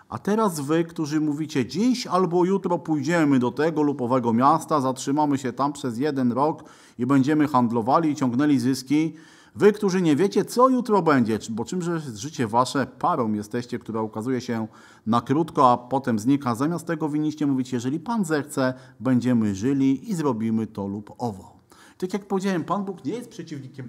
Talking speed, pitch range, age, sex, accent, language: 175 wpm, 130-180 Hz, 40-59, male, native, Polish